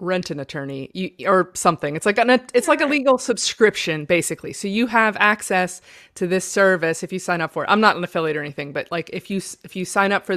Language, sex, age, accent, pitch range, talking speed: English, female, 20-39, American, 155-190 Hz, 250 wpm